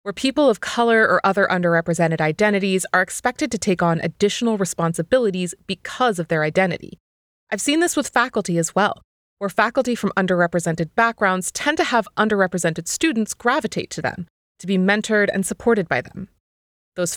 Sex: female